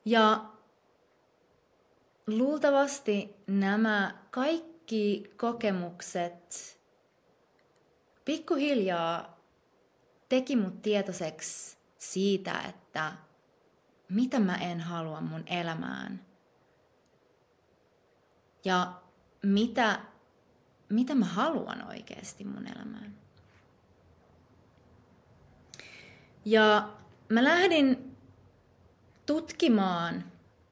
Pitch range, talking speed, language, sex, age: 175-230 Hz, 55 wpm, Finnish, female, 30-49